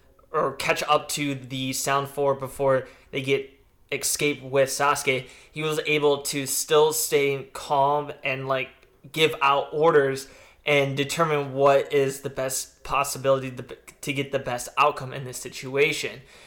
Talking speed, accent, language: 150 wpm, American, English